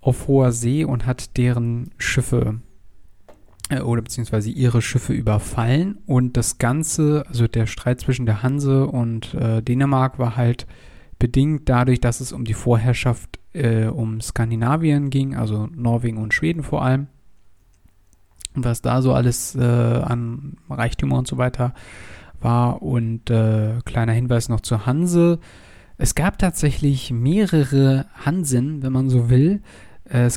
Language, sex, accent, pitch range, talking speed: German, male, German, 115-140 Hz, 145 wpm